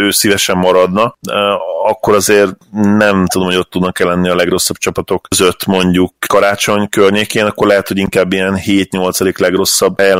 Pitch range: 90-95 Hz